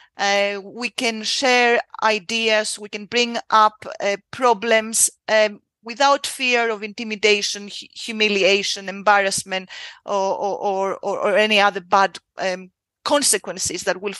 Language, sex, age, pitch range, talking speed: English, female, 30-49, 200-235 Hz, 125 wpm